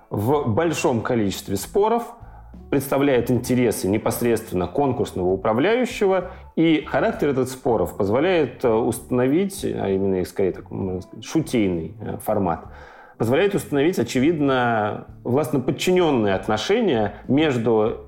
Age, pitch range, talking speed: 40-59, 105-140 Hz, 90 wpm